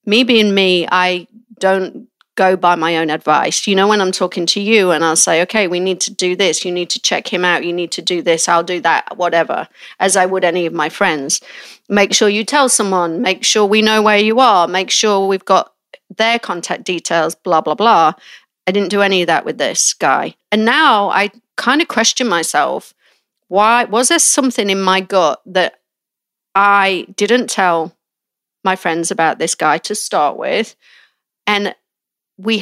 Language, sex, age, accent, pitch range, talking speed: English, female, 40-59, British, 180-220 Hz, 195 wpm